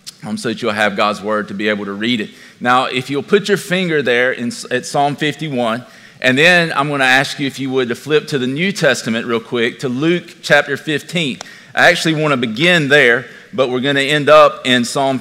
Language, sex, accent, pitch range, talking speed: English, male, American, 125-150 Hz, 235 wpm